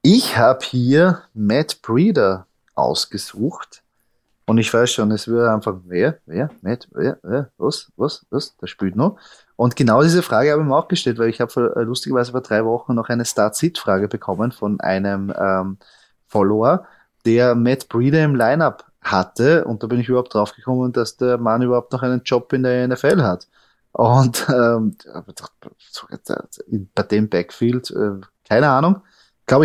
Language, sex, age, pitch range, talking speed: German, male, 30-49, 110-135 Hz, 165 wpm